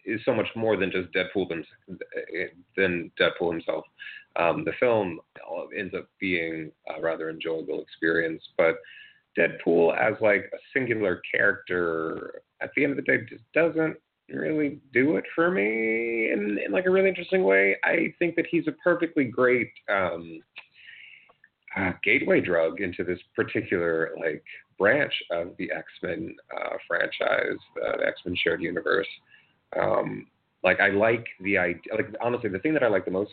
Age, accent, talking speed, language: 30-49, American, 155 wpm, English